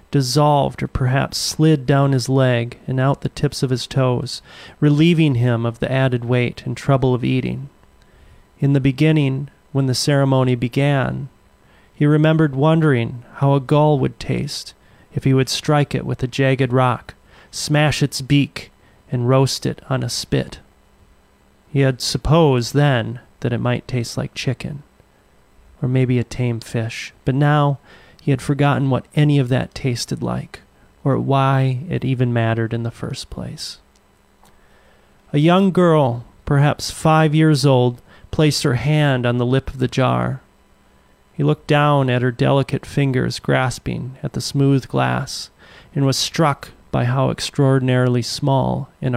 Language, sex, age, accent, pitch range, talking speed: English, male, 30-49, American, 125-145 Hz, 155 wpm